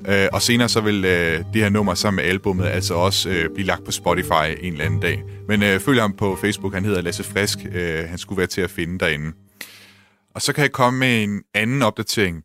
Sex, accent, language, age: male, native, Danish, 30-49